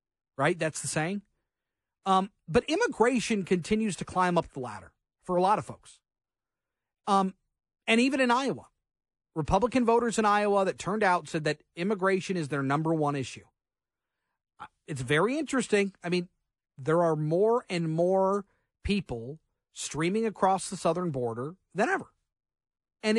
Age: 40-59